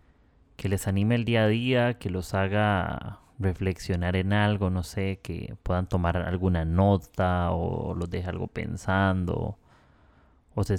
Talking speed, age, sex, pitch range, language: 150 wpm, 30-49, male, 90-105 Hz, Spanish